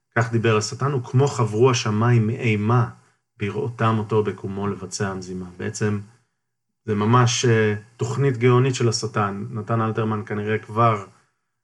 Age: 30-49